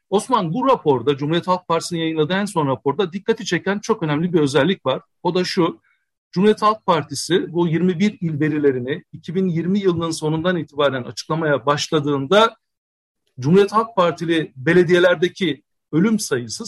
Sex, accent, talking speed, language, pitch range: male, native, 140 wpm, Turkish, 150-195 Hz